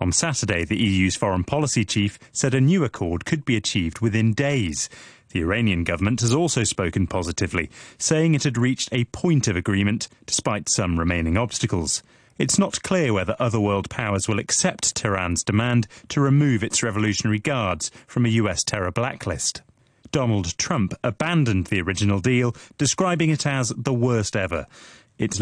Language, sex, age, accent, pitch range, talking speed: English, male, 30-49, British, 90-125 Hz, 165 wpm